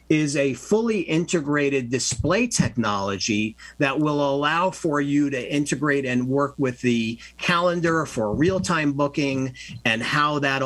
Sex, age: male, 50-69